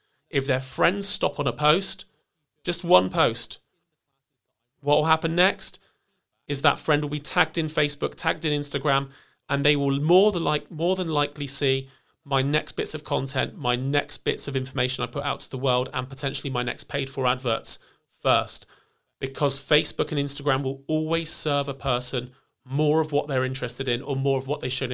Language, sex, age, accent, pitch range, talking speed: English, male, 30-49, British, 135-160 Hz, 190 wpm